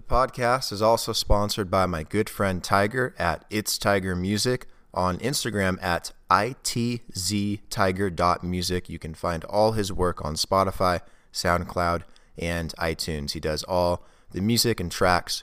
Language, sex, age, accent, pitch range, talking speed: English, male, 30-49, American, 85-110 Hz, 140 wpm